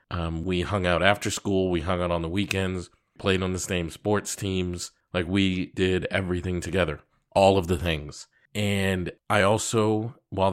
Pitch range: 85-100 Hz